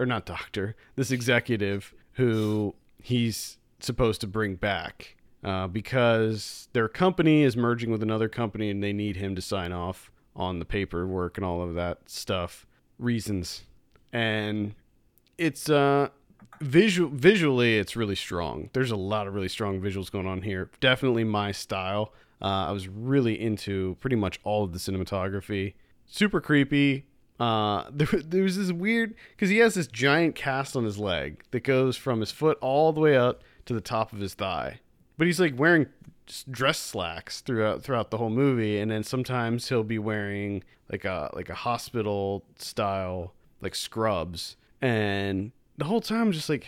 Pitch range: 100-140 Hz